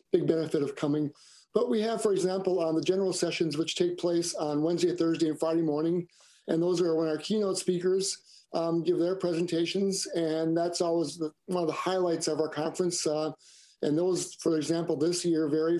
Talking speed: 195 wpm